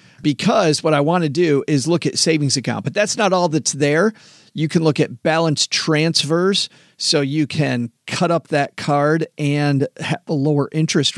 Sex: male